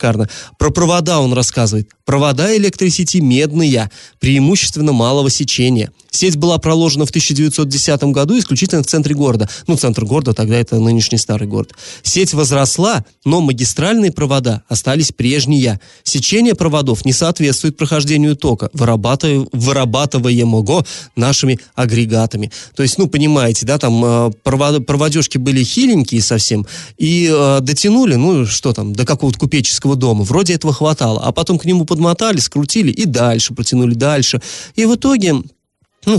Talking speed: 140 wpm